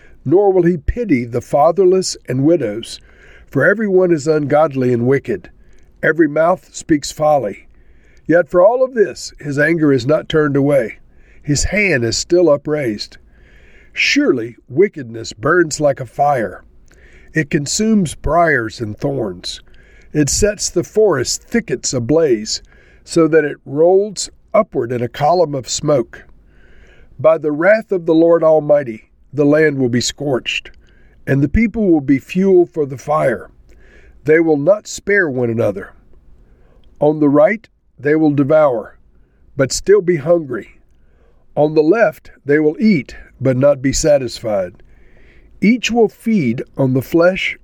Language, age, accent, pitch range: English, 50-69, American, 125-170 Hz